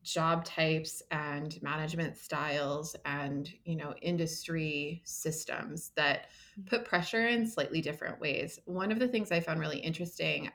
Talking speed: 140 wpm